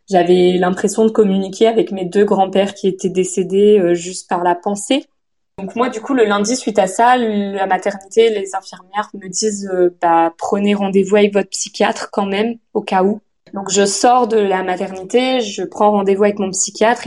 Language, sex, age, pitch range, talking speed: French, female, 20-39, 180-215 Hz, 195 wpm